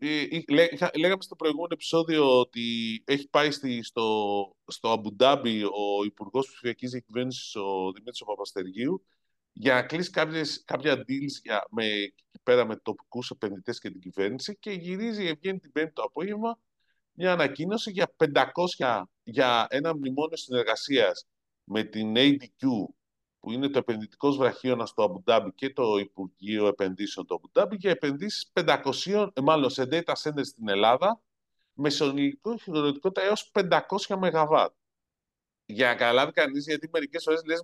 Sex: male